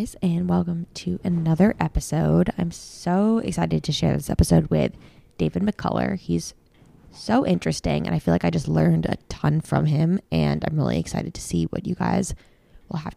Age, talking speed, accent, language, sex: 20-39, 180 wpm, American, English, female